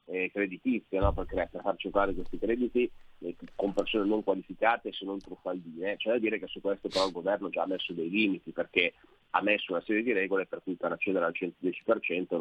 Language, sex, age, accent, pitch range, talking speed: Italian, male, 30-49, native, 90-105 Hz, 210 wpm